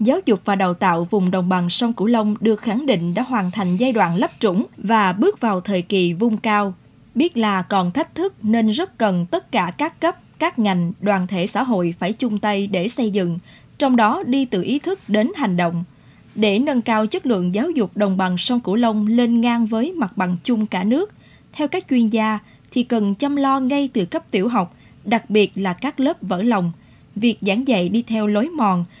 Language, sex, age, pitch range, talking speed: Vietnamese, female, 20-39, 190-250 Hz, 225 wpm